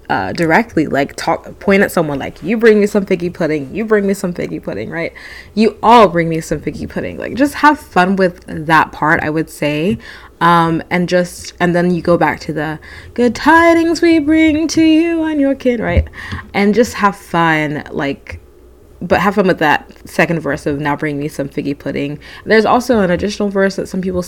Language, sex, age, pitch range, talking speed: English, female, 20-39, 155-205 Hz, 210 wpm